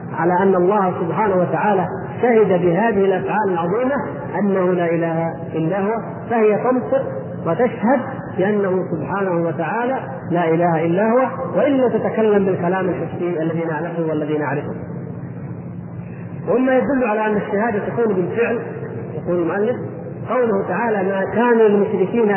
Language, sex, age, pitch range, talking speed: Arabic, male, 40-59, 170-210 Hz, 125 wpm